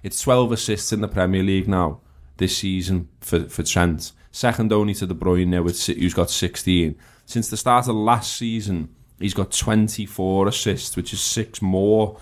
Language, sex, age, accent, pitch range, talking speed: English, male, 20-39, British, 90-110 Hz, 170 wpm